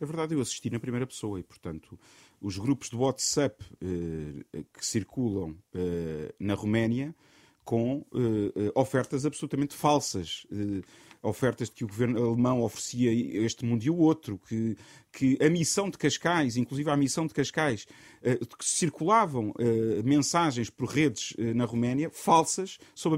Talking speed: 155 wpm